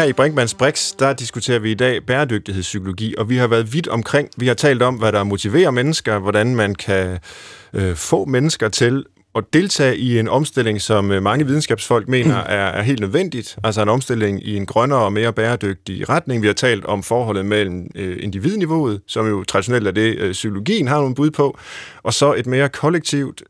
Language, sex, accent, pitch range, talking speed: Danish, male, native, 105-135 Hz, 195 wpm